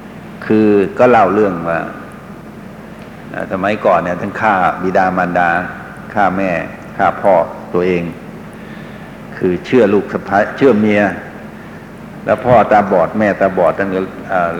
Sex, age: male, 60-79